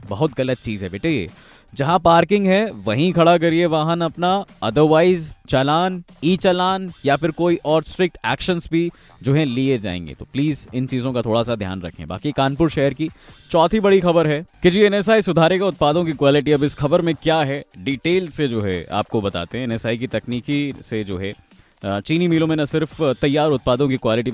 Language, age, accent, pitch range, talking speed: Hindi, 20-39, native, 115-155 Hz, 195 wpm